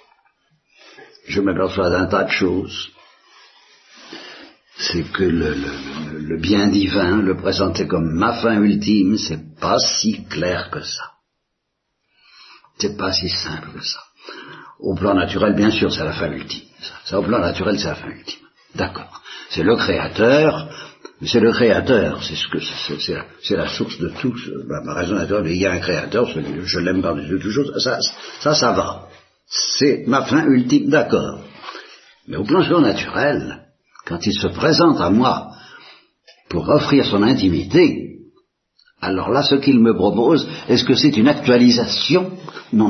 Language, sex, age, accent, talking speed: Italian, male, 60-79, French, 160 wpm